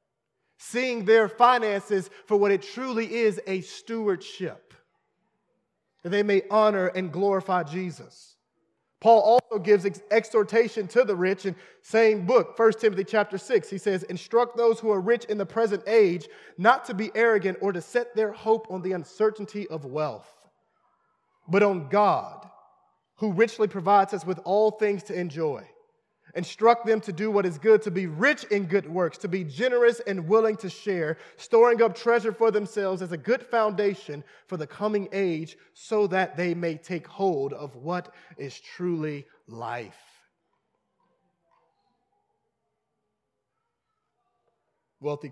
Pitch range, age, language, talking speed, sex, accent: 175-225 Hz, 30-49, English, 150 wpm, male, American